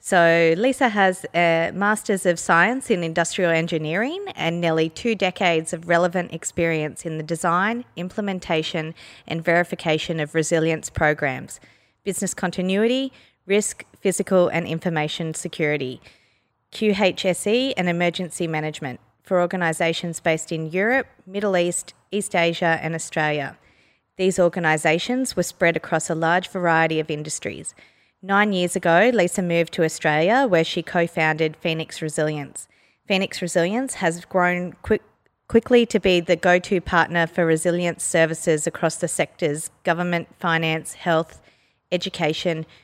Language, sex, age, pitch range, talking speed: English, female, 20-39, 160-185 Hz, 125 wpm